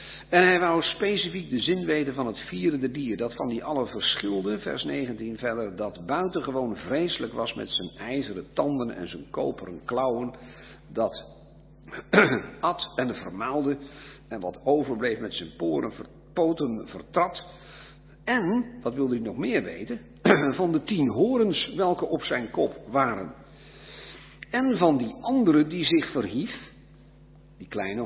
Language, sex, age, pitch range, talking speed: Dutch, male, 50-69, 110-180 Hz, 145 wpm